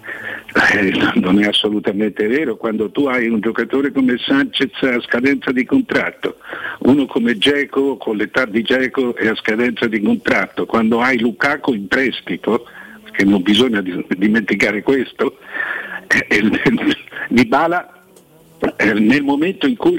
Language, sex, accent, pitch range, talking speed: Italian, male, native, 110-150 Hz, 140 wpm